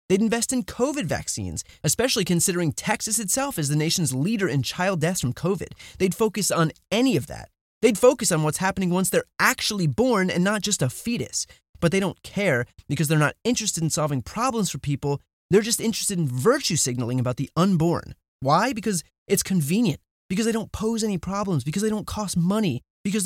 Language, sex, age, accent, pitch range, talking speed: English, male, 30-49, American, 150-220 Hz, 195 wpm